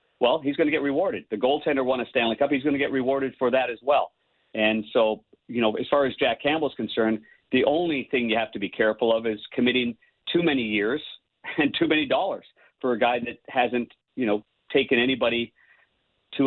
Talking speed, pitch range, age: 215 wpm, 110-135 Hz, 50-69